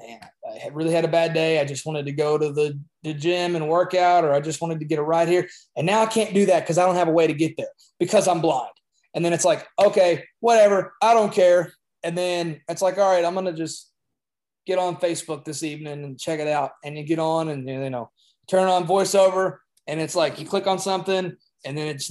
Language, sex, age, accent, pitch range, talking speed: English, male, 20-39, American, 150-185 Hz, 255 wpm